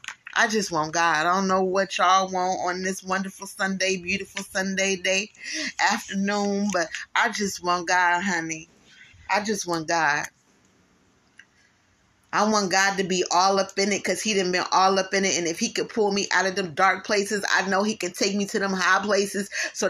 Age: 20-39